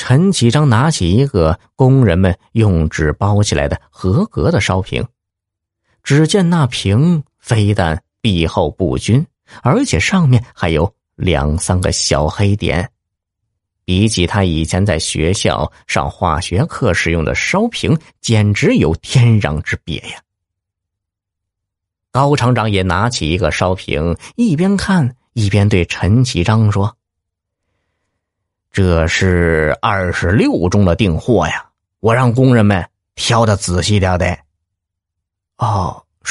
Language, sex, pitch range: Chinese, male, 90-115 Hz